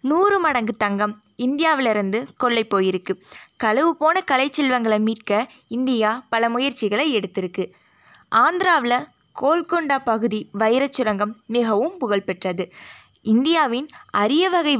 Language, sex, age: Tamil, female, 20-39